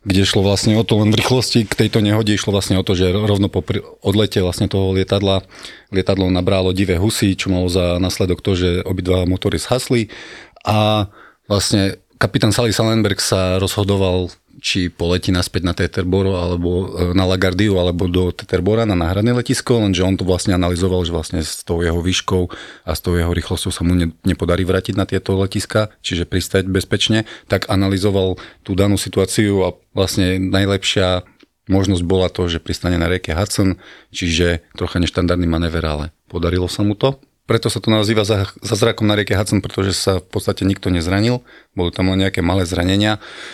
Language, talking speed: Slovak, 180 wpm